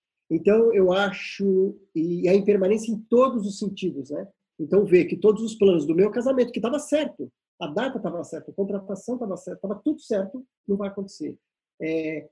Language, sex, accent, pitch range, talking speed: Portuguese, male, Brazilian, 165-210 Hz, 185 wpm